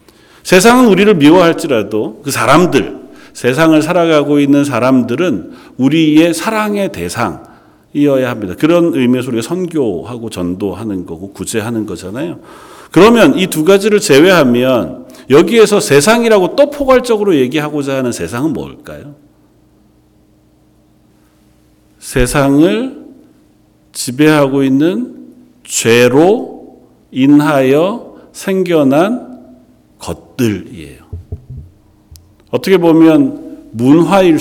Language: Korean